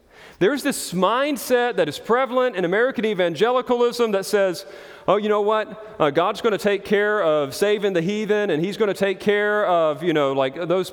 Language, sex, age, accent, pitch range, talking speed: English, male, 40-59, American, 200-310 Hz, 205 wpm